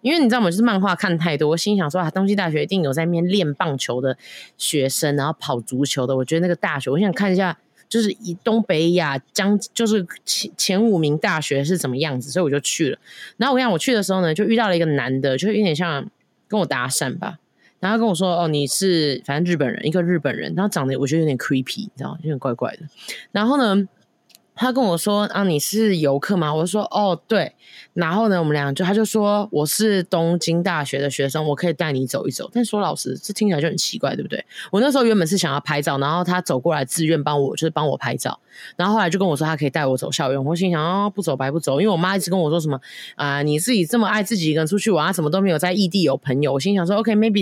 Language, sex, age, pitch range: Chinese, female, 20-39, 150-210 Hz